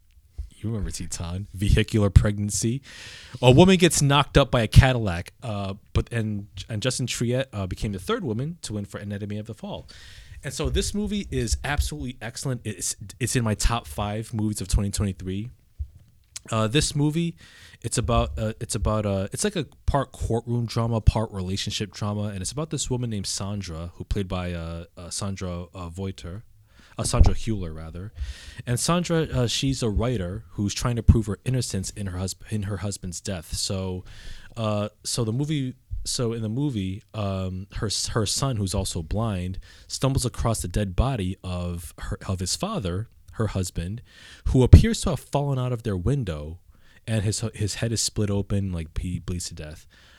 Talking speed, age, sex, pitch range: 180 wpm, 20-39, male, 95-115 Hz